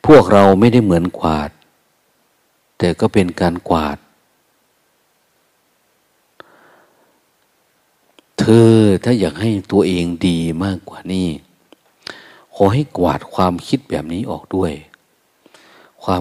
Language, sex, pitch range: Thai, male, 85-105 Hz